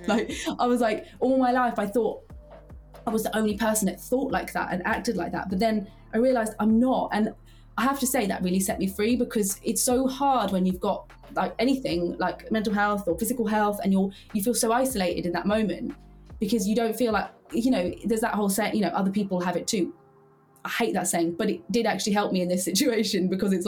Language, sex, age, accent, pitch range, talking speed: English, female, 20-39, British, 180-225 Hz, 245 wpm